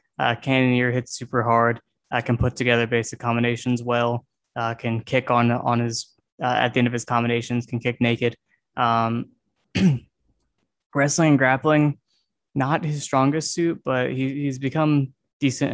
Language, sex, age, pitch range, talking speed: English, male, 20-39, 120-135 Hz, 155 wpm